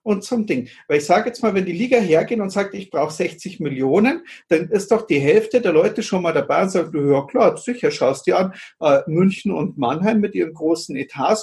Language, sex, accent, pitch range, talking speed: German, male, German, 160-215 Hz, 235 wpm